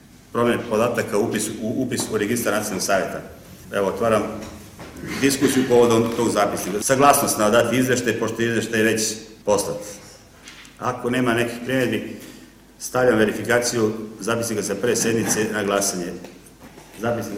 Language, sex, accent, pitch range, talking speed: Czech, male, Croatian, 105-120 Hz, 130 wpm